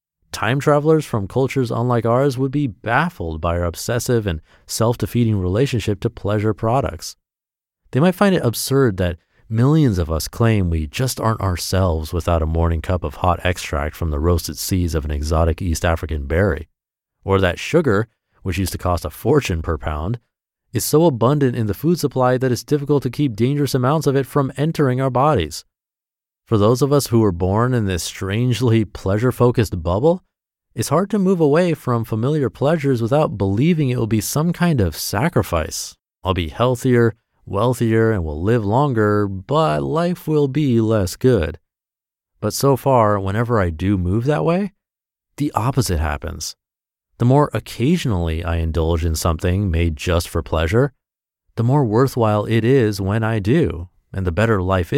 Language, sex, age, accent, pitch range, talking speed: English, male, 30-49, American, 90-135 Hz, 170 wpm